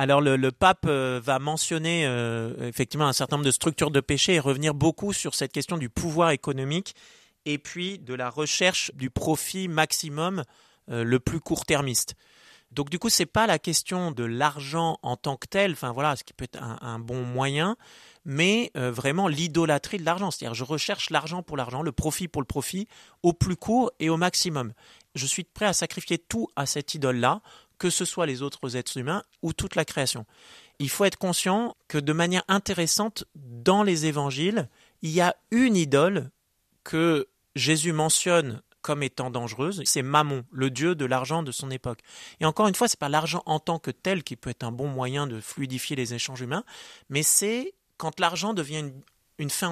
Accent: French